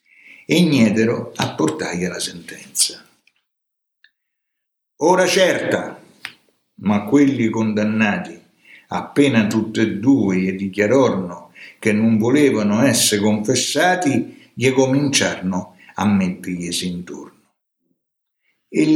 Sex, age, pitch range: male, 60-79, 110-175 Hz